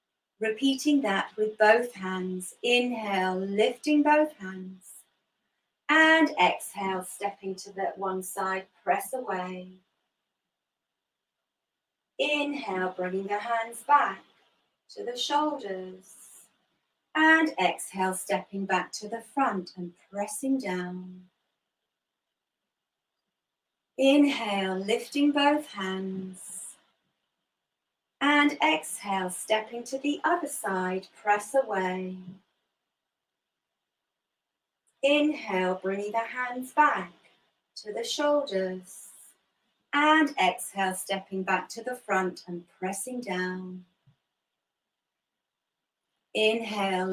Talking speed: 85 wpm